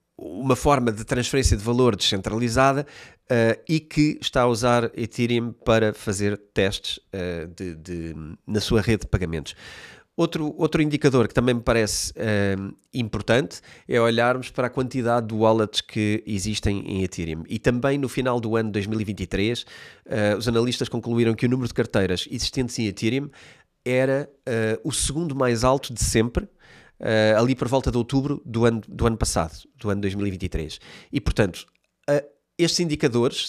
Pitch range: 100-120 Hz